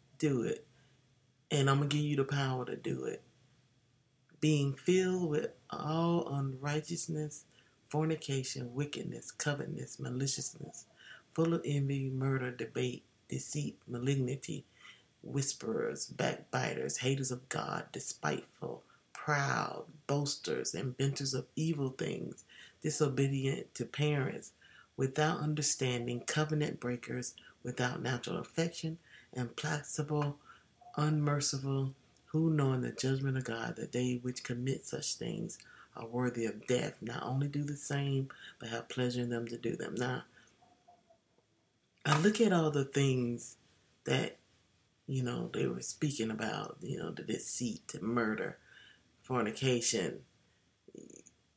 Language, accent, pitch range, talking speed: English, American, 125-150 Hz, 120 wpm